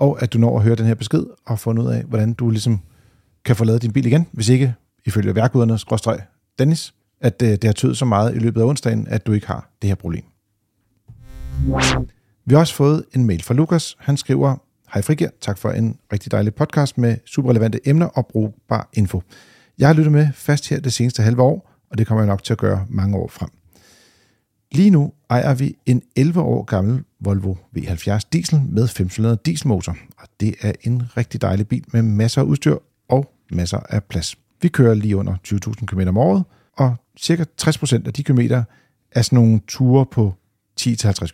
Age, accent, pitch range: 40-59, native, 105-135 Hz